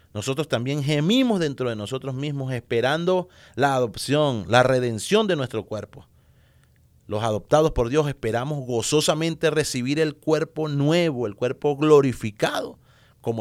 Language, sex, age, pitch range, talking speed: English, male, 30-49, 110-145 Hz, 130 wpm